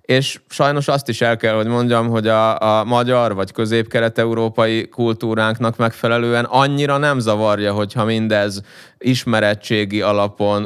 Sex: male